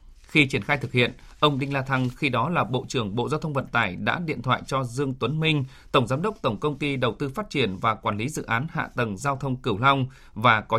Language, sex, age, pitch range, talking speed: Vietnamese, male, 20-39, 120-150 Hz, 270 wpm